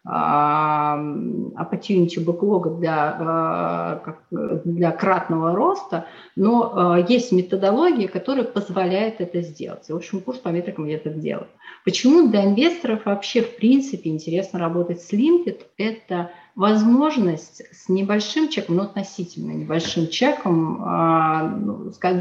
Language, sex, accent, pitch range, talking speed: Russian, female, native, 170-210 Hz, 110 wpm